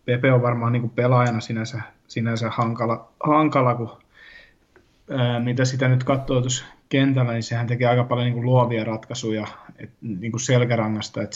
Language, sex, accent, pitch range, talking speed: Finnish, male, native, 110-125 Hz, 155 wpm